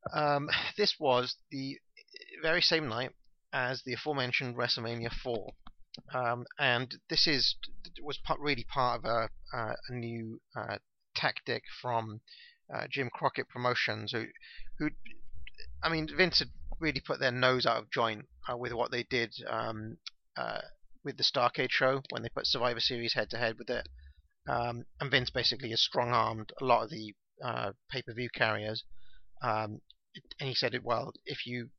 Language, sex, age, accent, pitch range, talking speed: English, male, 30-49, British, 110-130 Hz, 160 wpm